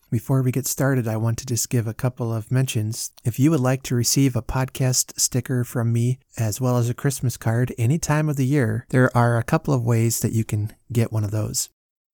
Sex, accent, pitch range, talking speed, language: male, American, 110-130 Hz, 235 wpm, English